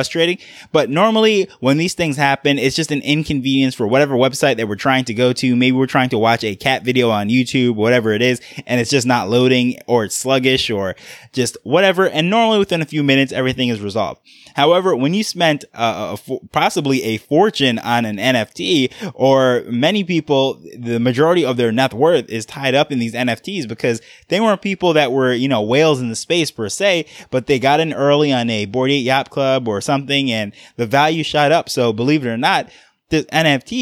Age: 20-39